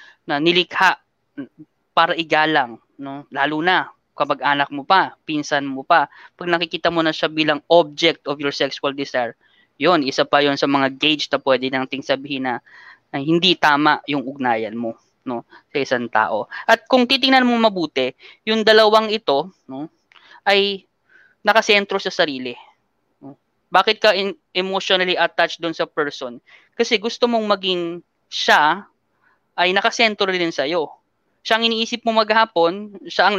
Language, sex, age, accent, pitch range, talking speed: Filipino, female, 20-39, native, 155-225 Hz, 150 wpm